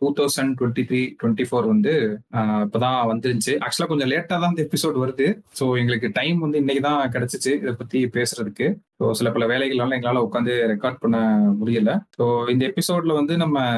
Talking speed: 180 wpm